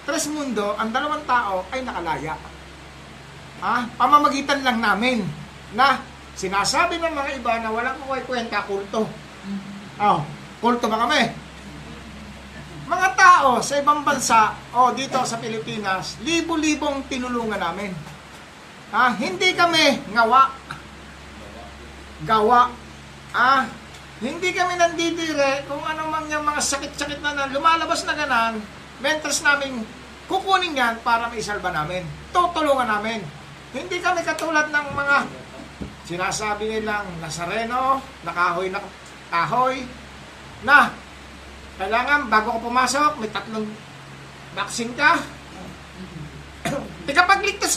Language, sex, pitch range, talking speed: English, male, 205-295 Hz, 110 wpm